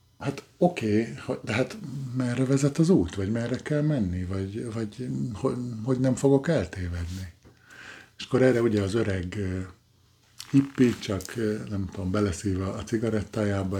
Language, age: Hungarian, 50-69